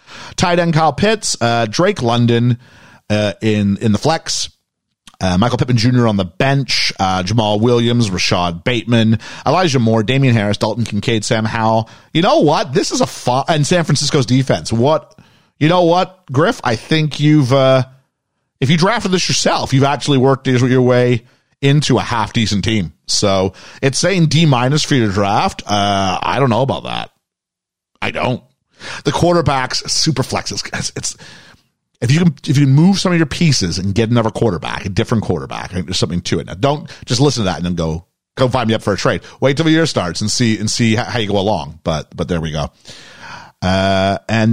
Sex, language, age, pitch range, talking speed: male, English, 40-59, 100-140 Hz, 200 wpm